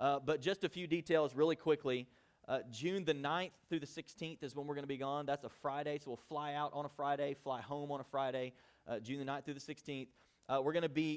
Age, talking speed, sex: 30-49, 265 wpm, male